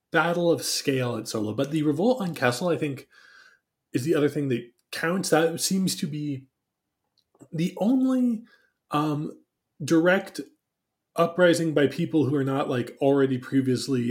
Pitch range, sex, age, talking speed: 120-170 Hz, male, 20-39, 150 wpm